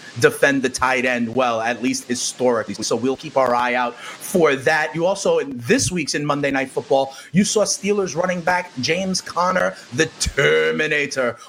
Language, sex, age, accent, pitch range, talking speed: English, male, 30-49, American, 145-225 Hz, 180 wpm